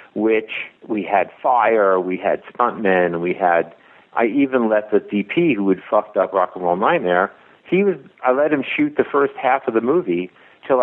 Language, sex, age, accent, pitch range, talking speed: English, male, 50-69, American, 95-120 Hz, 195 wpm